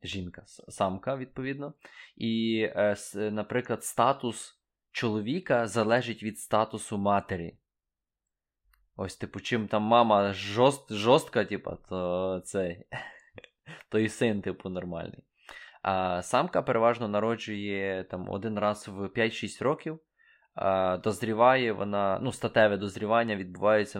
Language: Ukrainian